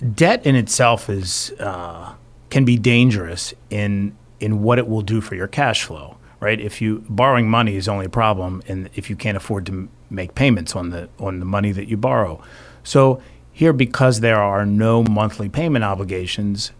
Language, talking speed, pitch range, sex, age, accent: English, 190 wpm, 100-120 Hz, male, 30-49, American